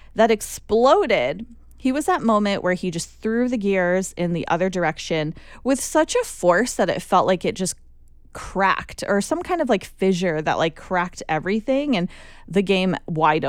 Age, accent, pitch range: 20-39, American, 180-245 Hz